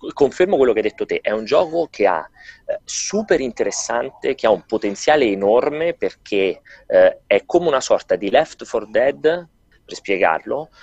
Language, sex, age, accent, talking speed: Italian, male, 30-49, native, 170 wpm